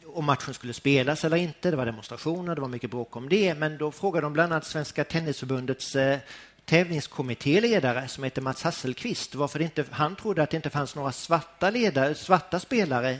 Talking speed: 175 wpm